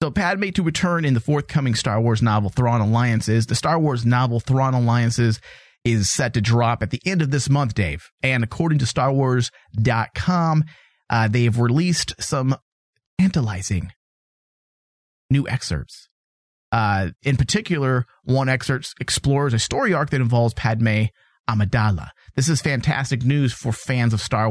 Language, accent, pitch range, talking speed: English, American, 110-150 Hz, 145 wpm